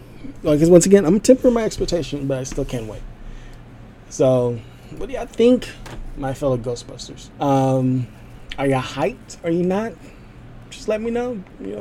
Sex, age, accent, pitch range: male, 20-39, American, 120-150 Hz